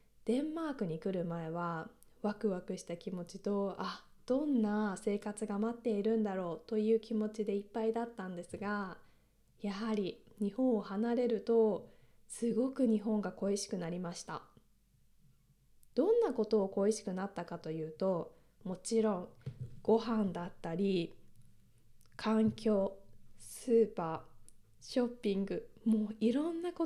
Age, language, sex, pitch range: 20-39, Japanese, female, 180-225 Hz